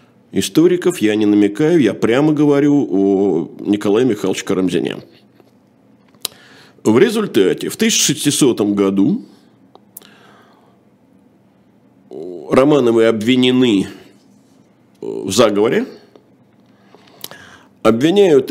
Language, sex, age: Russian, male, 50-69